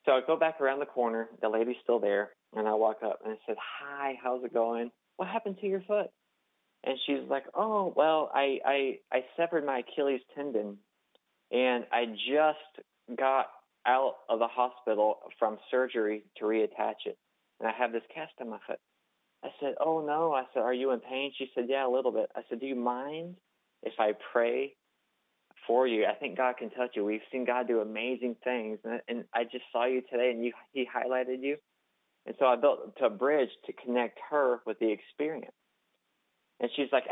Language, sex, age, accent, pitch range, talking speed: English, male, 30-49, American, 115-135 Hz, 200 wpm